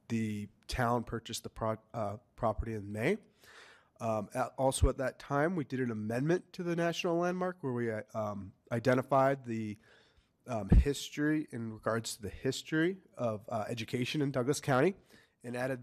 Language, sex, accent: English, male, American